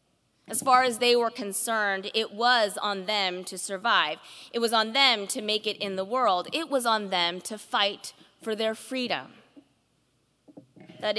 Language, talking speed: English, 170 wpm